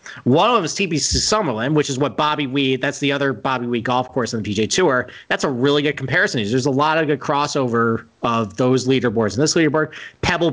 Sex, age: male, 40-59